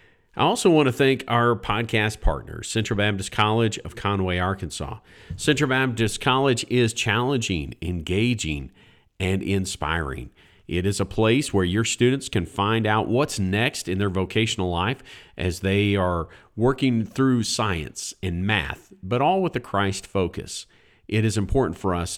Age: 50-69